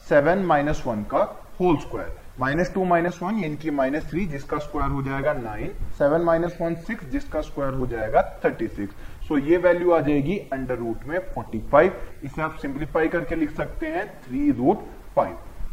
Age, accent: 20-39, Indian